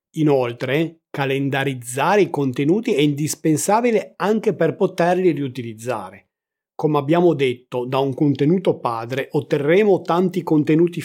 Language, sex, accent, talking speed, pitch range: Italian, male, native, 110 wpm, 135-175 Hz